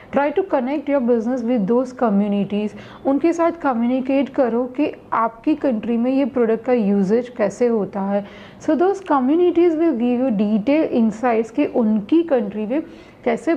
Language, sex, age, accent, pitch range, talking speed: Hindi, female, 40-59, native, 215-280 Hz, 160 wpm